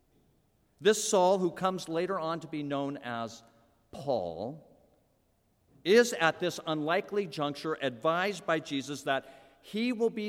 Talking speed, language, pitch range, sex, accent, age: 135 wpm, English, 120-175 Hz, male, American, 50-69